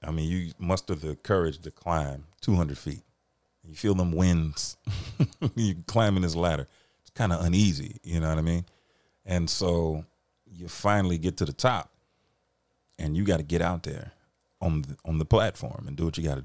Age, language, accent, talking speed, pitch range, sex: 30-49, English, American, 195 wpm, 75-100 Hz, male